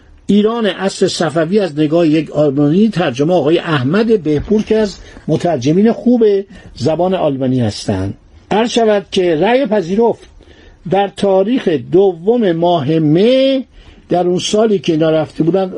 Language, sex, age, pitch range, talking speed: Persian, male, 60-79, 150-210 Hz, 120 wpm